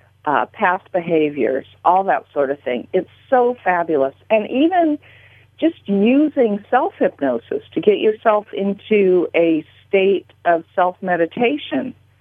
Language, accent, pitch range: English, American, 150-230 Hz